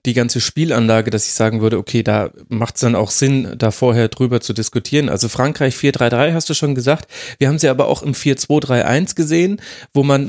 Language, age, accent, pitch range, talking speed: German, 30-49, German, 115-140 Hz, 210 wpm